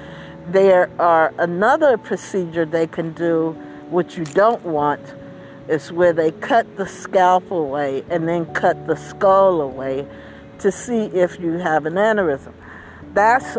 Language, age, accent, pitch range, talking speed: English, 60-79, American, 160-205 Hz, 140 wpm